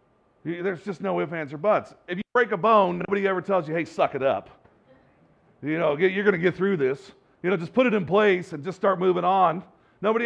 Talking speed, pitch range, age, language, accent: 245 wpm, 160-210 Hz, 40-59, English, American